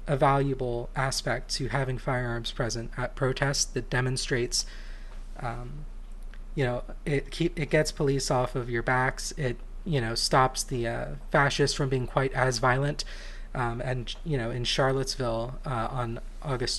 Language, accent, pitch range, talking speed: English, American, 115-135 Hz, 155 wpm